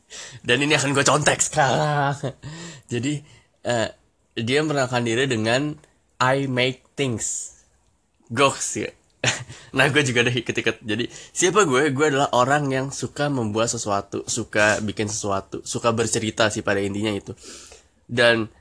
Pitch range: 105-135 Hz